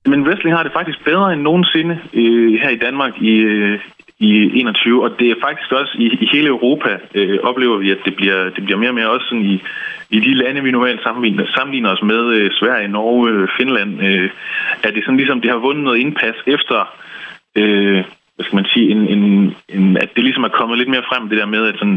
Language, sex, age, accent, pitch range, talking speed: Danish, male, 20-39, native, 105-125 Hz, 225 wpm